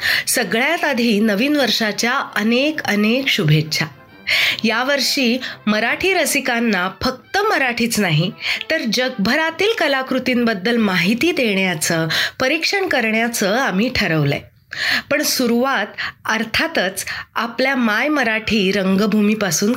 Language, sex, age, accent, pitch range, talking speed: Marathi, female, 20-39, native, 205-280 Hz, 90 wpm